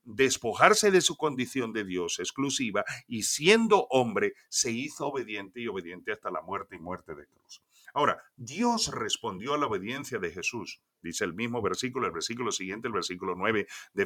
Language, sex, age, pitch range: Spanish, male, 50-69, 120-180 Hz